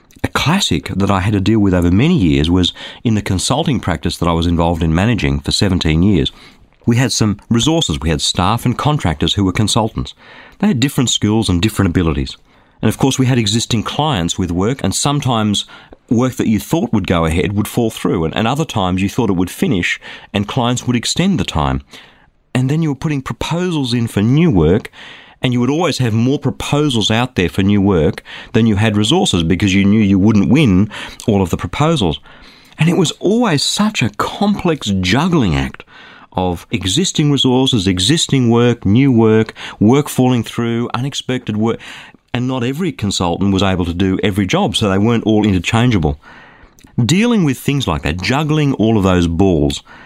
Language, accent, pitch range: English, Australian, 95-130 Hz